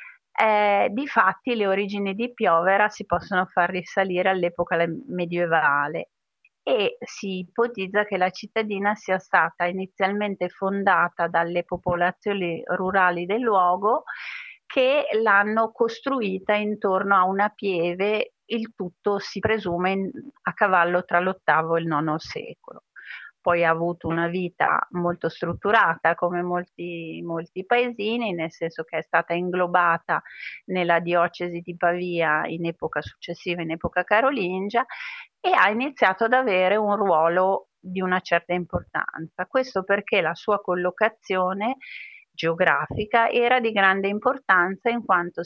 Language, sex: Italian, female